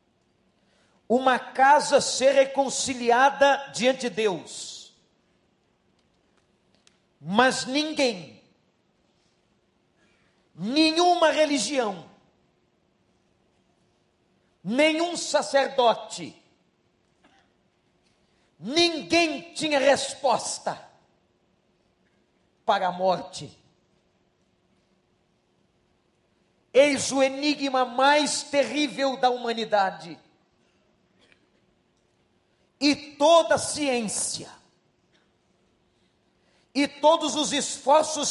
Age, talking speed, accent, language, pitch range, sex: 50-69, 55 wpm, Brazilian, Portuguese, 235-290 Hz, male